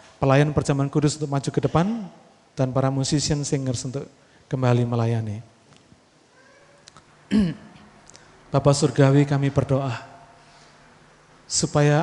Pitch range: 135-180 Hz